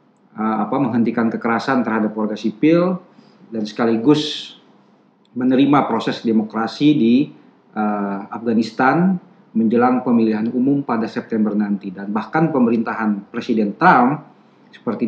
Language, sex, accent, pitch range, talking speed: Indonesian, male, native, 110-155 Hz, 105 wpm